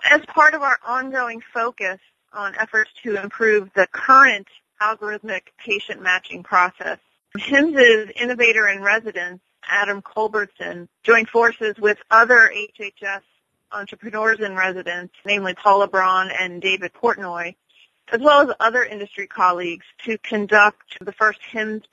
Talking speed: 120 wpm